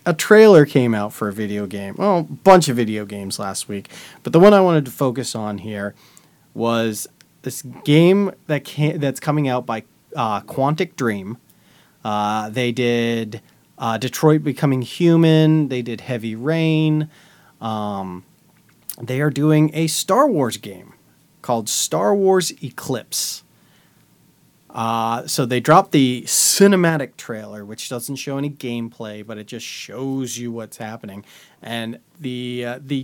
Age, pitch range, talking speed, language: 30-49, 115-155 Hz, 145 wpm, English